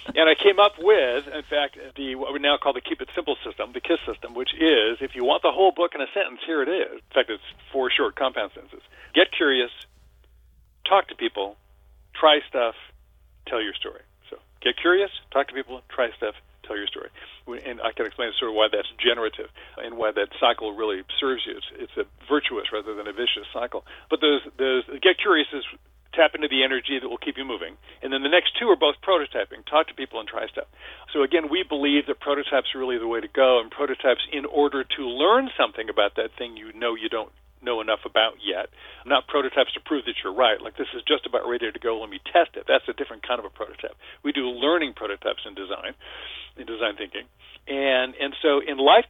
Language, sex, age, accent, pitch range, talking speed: English, male, 50-69, American, 130-200 Hz, 225 wpm